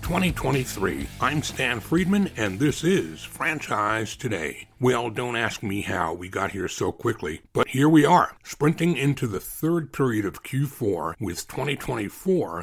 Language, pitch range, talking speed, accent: English, 100-145 Hz, 150 wpm, American